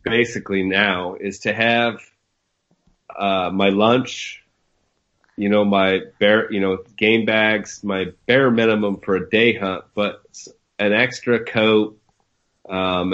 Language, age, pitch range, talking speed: English, 30-49, 90-105 Hz, 130 wpm